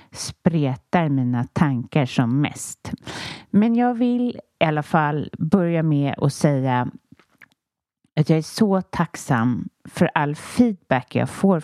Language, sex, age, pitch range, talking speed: Swedish, female, 30-49, 145-190 Hz, 130 wpm